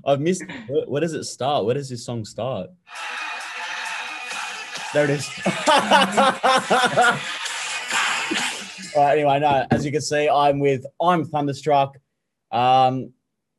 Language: English